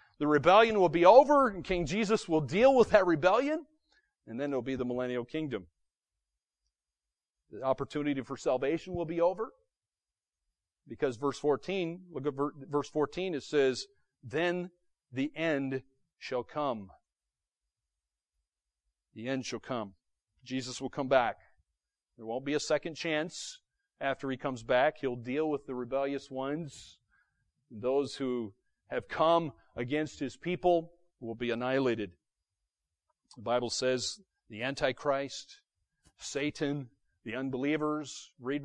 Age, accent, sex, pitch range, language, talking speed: 40-59, American, male, 115-155 Hz, English, 130 wpm